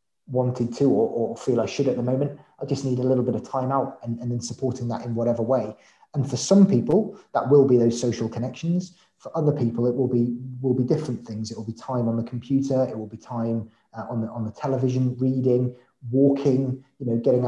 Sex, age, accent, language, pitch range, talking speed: male, 20-39, British, English, 120-140 Hz, 235 wpm